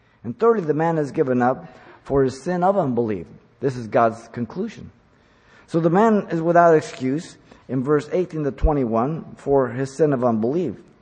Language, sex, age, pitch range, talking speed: English, male, 50-69, 120-160 Hz, 175 wpm